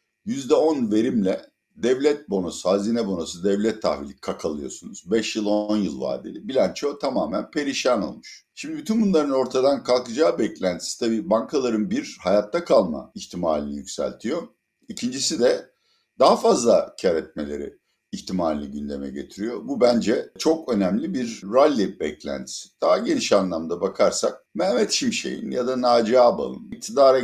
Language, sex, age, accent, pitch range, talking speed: Turkish, male, 60-79, native, 105-165 Hz, 130 wpm